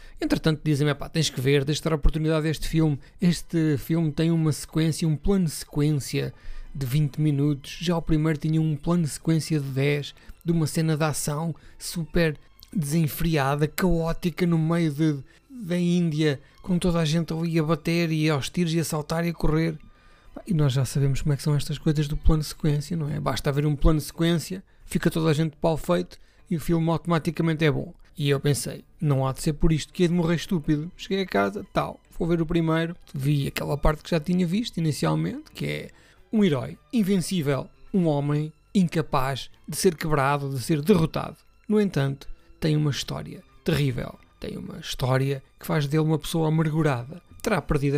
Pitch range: 145-170 Hz